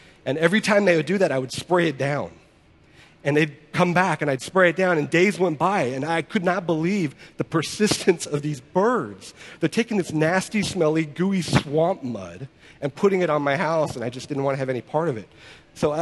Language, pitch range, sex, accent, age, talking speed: English, 120-165 Hz, male, American, 40-59, 230 wpm